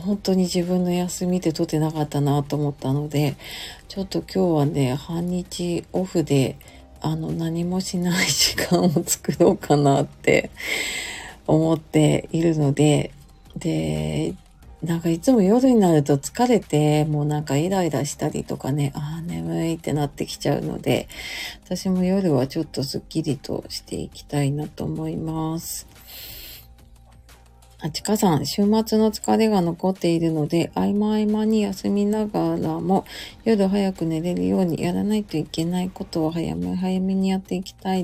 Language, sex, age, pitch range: Japanese, female, 40-59, 150-195 Hz